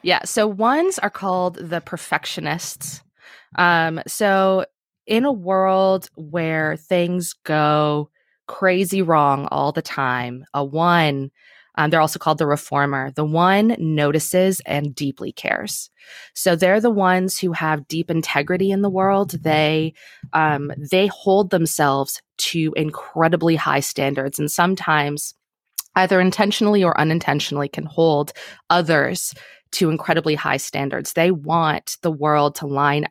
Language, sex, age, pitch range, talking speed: English, female, 20-39, 150-180 Hz, 130 wpm